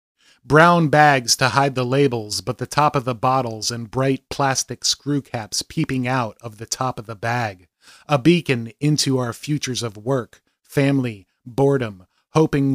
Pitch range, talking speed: 115-140 Hz, 165 wpm